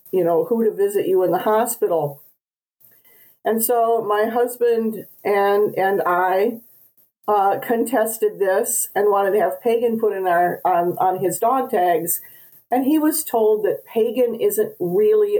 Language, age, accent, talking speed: English, 50-69, American, 155 wpm